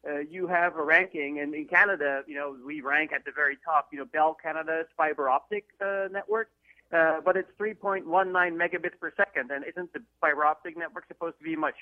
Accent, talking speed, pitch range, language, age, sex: American, 210 wpm, 145-180 Hz, English, 30-49, male